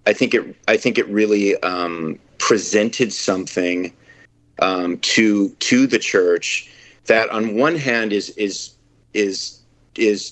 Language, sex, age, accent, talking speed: English, male, 40-59, American, 135 wpm